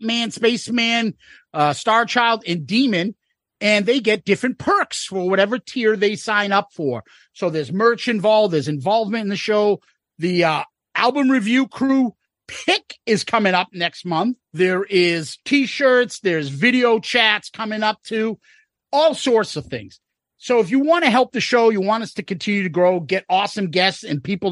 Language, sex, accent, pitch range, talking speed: English, male, American, 175-230 Hz, 175 wpm